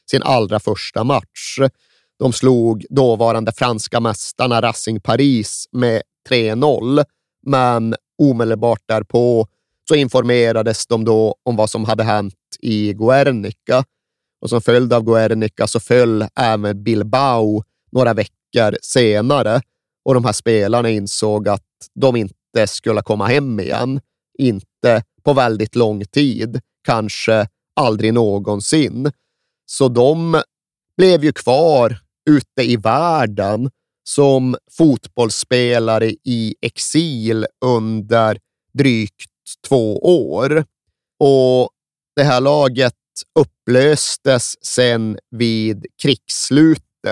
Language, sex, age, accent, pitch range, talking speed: Swedish, male, 30-49, native, 110-130 Hz, 105 wpm